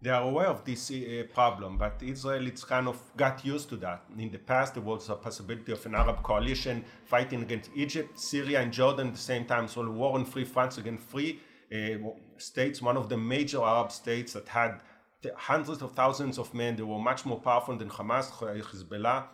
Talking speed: 215 wpm